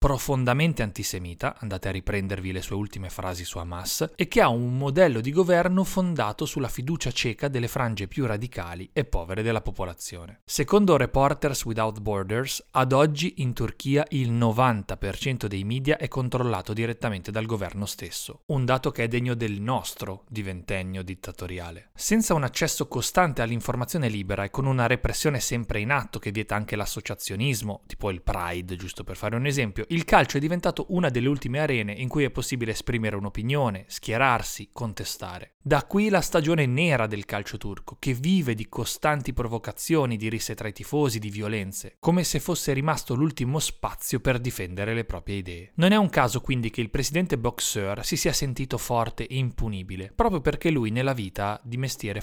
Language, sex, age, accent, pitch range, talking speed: Italian, male, 30-49, native, 105-145 Hz, 175 wpm